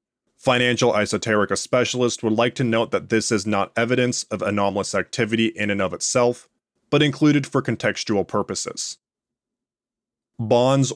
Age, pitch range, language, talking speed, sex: 20-39, 105-125 Hz, English, 135 wpm, male